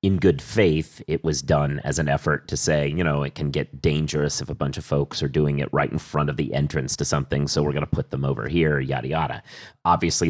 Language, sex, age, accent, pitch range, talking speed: English, male, 30-49, American, 75-90 Hz, 255 wpm